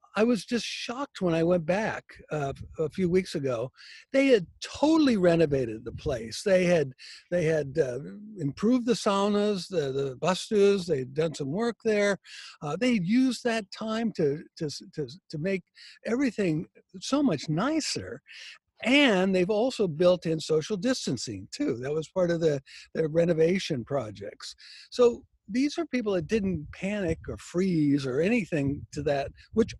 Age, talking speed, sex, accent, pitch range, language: 60-79, 160 wpm, male, American, 160-225 Hz, English